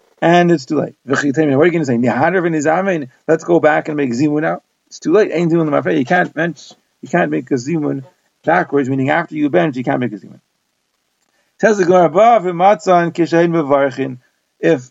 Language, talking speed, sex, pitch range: English, 155 wpm, male, 150-185 Hz